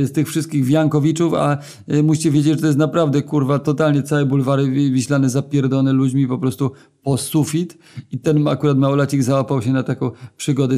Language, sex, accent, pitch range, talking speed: Polish, male, native, 130-145 Hz, 175 wpm